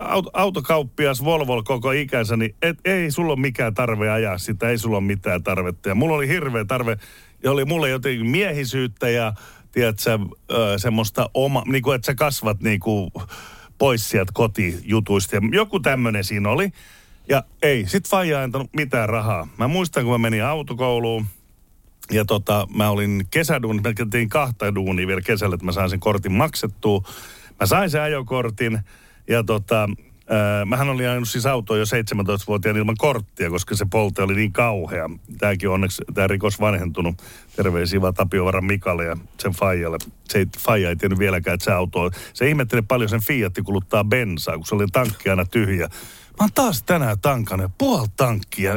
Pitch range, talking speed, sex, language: 100-130 Hz, 160 wpm, male, Finnish